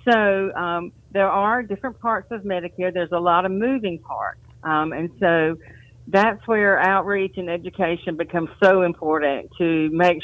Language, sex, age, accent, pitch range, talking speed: English, female, 50-69, American, 145-190 Hz, 160 wpm